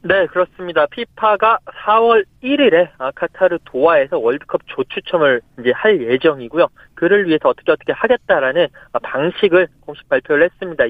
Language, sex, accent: Korean, male, native